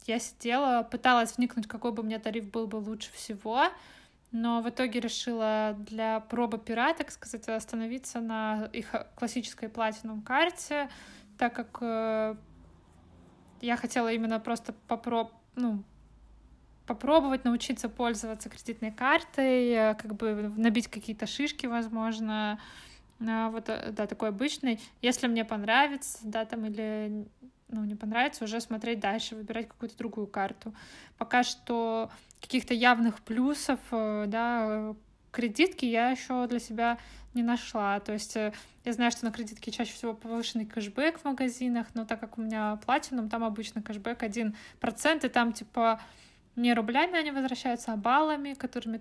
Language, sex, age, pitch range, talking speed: Russian, female, 20-39, 220-245 Hz, 135 wpm